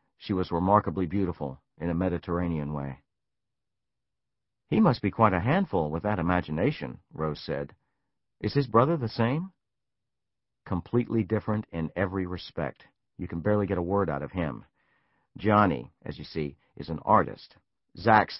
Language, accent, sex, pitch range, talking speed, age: English, American, male, 85-115 Hz, 150 wpm, 50-69